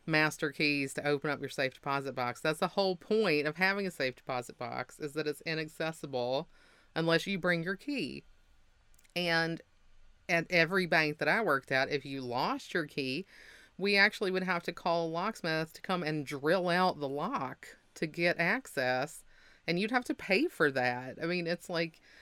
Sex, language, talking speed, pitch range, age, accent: female, English, 190 wpm, 140-175 Hz, 30-49, American